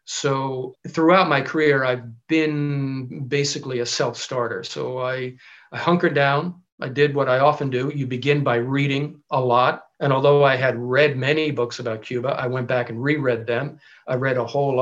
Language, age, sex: English, 50-69, male